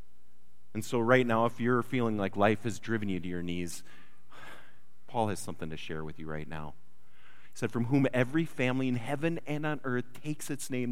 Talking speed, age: 210 wpm, 30-49